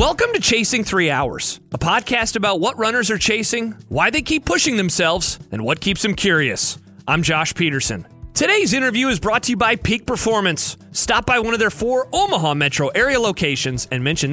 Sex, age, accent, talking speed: male, 30-49, American, 195 wpm